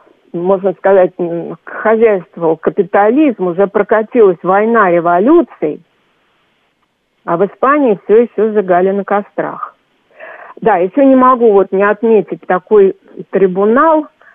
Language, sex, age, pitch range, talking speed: Russian, female, 50-69, 185-235 Hz, 105 wpm